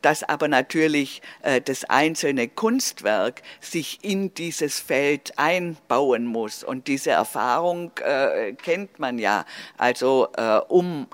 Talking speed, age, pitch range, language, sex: 125 wpm, 50-69, 130-180 Hz, German, female